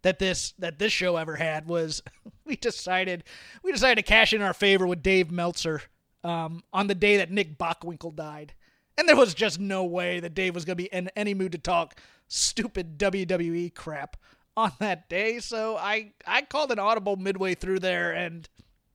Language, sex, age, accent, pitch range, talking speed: English, male, 30-49, American, 175-220 Hz, 190 wpm